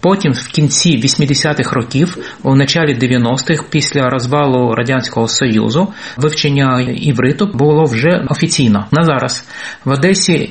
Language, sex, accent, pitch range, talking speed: Ukrainian, male, native, 125-150 Hz, 120 wpm